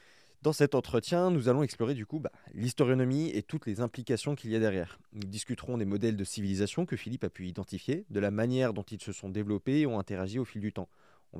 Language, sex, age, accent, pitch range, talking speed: French, male, 20-39, French, 95-120 Hz, 235 wpm